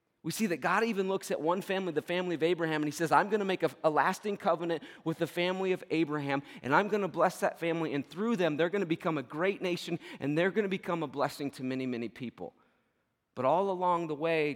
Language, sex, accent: English, male, American